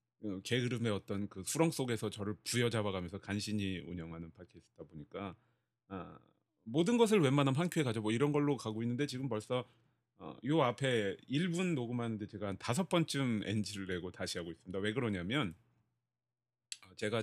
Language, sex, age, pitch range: Korean, male, 30-49, 100-145 Hz